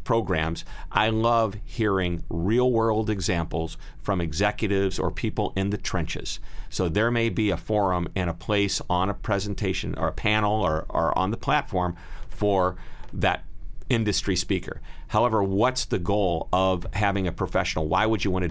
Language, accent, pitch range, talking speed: English, American, 85-115 Hz, 165 wpm